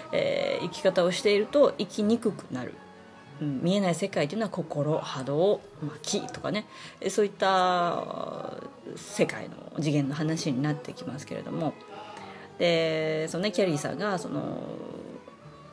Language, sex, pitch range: Japanese, female, 155-220 Hz